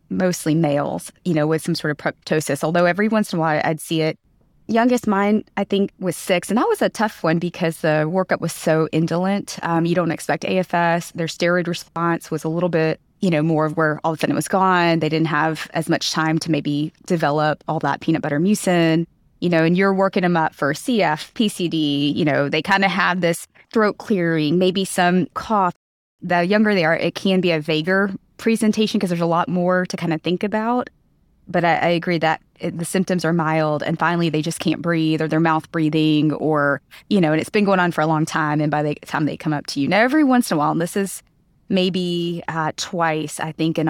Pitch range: 155-185 Hz